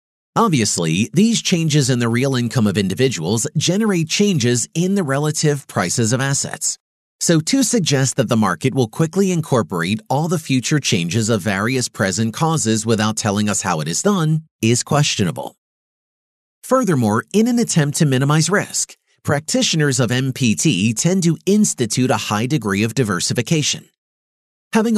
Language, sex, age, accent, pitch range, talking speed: English, male, 40-59, American, 115-165 Hz, 150 wpm